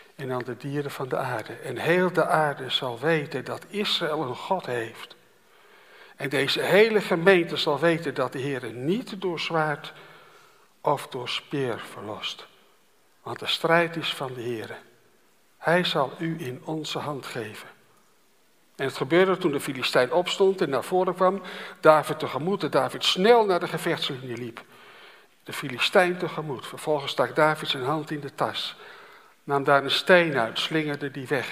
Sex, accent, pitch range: male, Dutch, 135-180 Hz